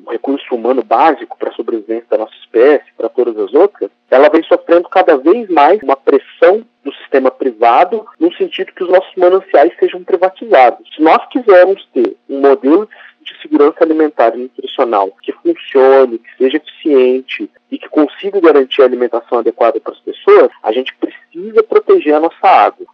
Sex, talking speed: male, 175 wpm